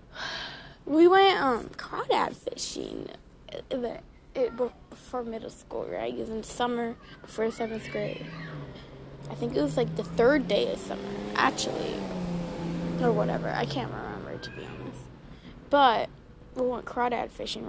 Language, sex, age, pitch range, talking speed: English, female, 10-29, 235-290 Hz, 135 wpm